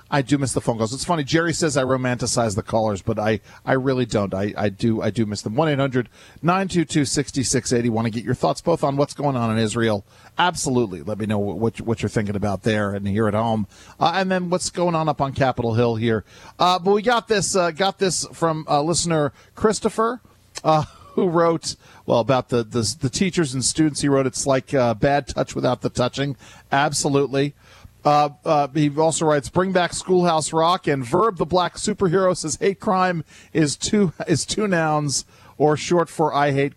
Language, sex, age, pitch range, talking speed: English, male, 40-59, 115-160 Hz, 205 wpm